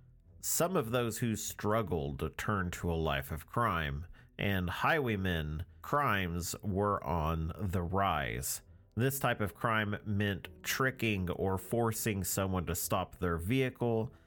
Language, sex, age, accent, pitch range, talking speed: English, male, 40-59, American, 85-115 Hz, 130 wpm